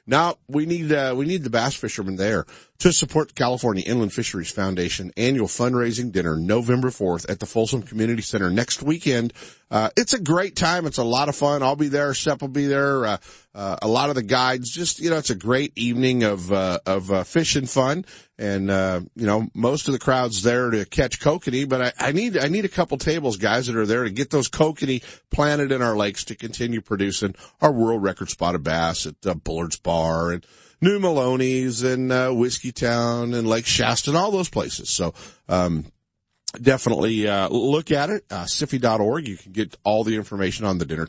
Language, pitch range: English, 95-135 Hz